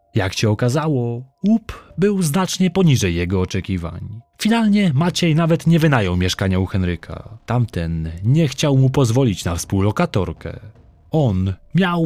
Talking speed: 130 wpm